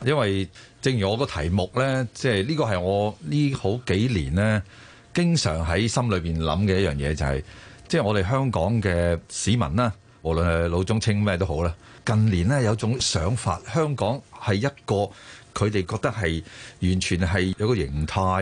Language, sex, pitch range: Chinese, male, 90-120 Hz